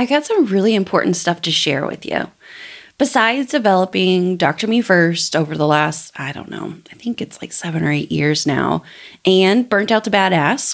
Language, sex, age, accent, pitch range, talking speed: English, female, 30-49, American, 170-230 Hz, 195 wpm